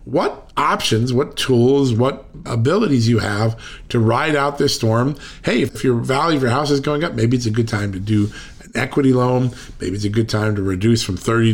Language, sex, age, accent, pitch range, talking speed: English, male, 40-59, American, 110-135 Hz, 220 wpm